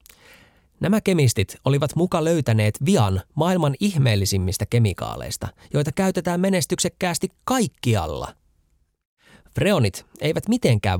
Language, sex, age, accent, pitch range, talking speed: Finnish, male, 30-49, native, 95-155 Hz, 85 wpm